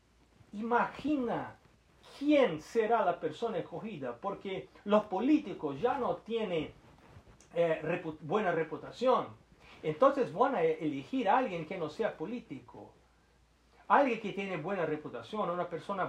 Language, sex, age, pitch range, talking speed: Portuguese, male, 40-59, 175-250 Hz, 120 wpm